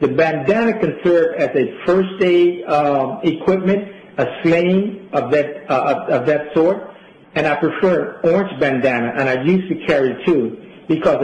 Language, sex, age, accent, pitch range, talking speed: English, male, 60-79, American, 145-190 Hz, 165 wpm